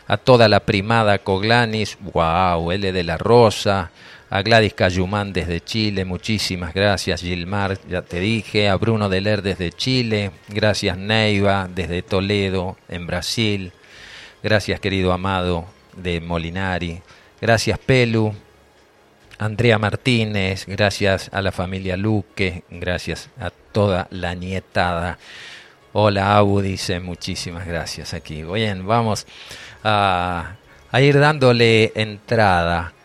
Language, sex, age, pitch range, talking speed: Spanish, male, 40-59, 90-110 Hz, 120 wpm